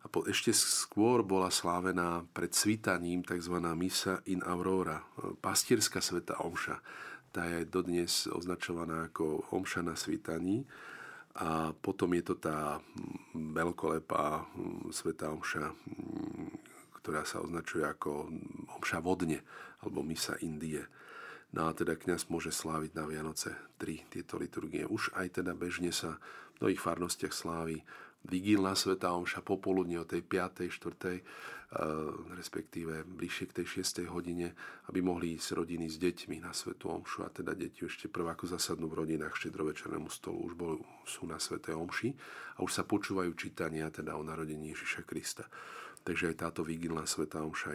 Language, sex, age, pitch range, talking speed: Slovak, male, 40-59, 80-90 Hz, 145 wpm